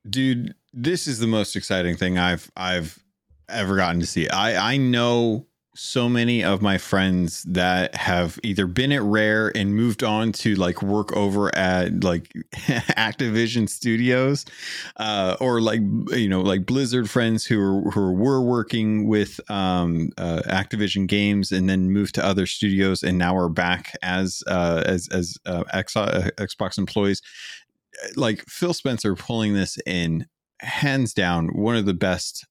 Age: 30-49